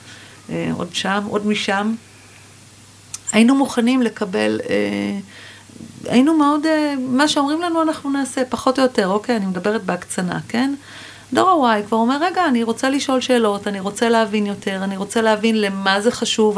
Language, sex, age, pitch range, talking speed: Hebrew, female, 40-59, 195-255 Hz, 160 wpm